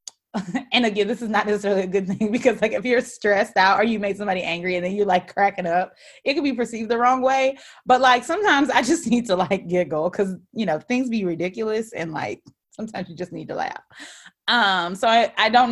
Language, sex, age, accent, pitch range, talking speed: English, female, 20-39, American, 160-215 Hz, 230 wpm